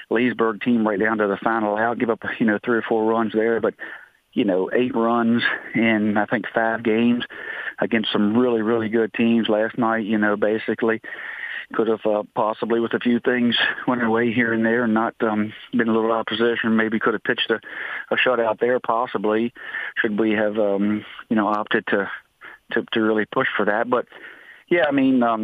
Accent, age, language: American, 40-59, English